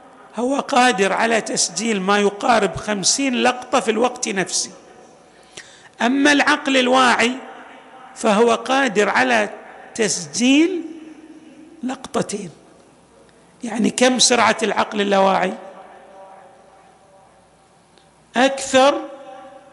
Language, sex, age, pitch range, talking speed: Arabic, male, 50-69, 200-260 Hz, 75 wpm